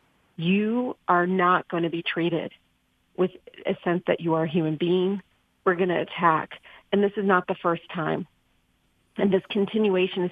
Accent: American